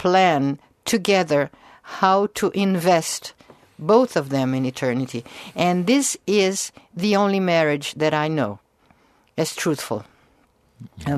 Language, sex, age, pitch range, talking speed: English, female, 60-79, 130-185 Hz, 120 wpm